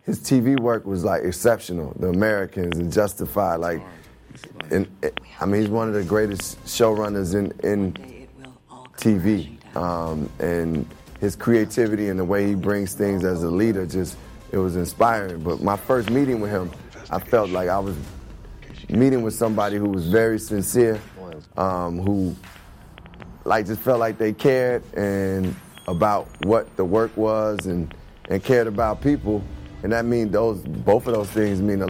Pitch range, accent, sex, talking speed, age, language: 90-110 Hz, American, male, 165 wpm, 20-39, English